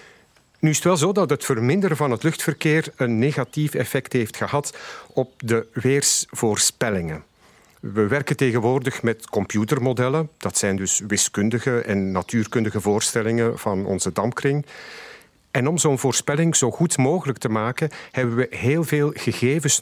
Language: Dutch